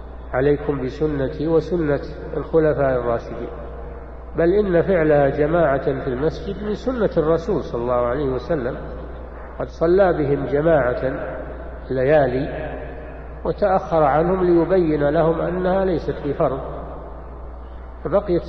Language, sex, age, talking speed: Arabic, male, 50-69, 105 wpm